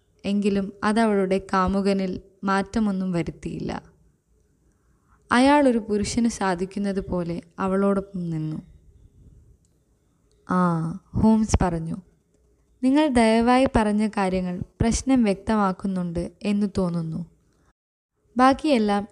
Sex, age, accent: female, 20-39, native